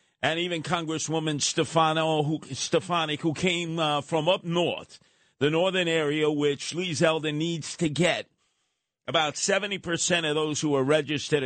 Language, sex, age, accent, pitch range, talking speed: English, male, 50-69, American, 140-175 Hz, 150 wpm